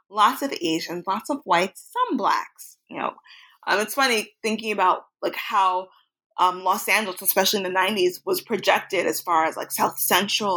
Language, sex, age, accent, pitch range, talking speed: English, female, 20-39, American, 185-245 Hz, 180 wpm